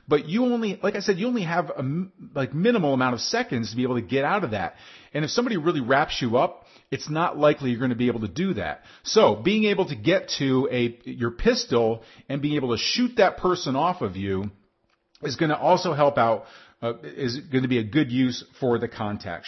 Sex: male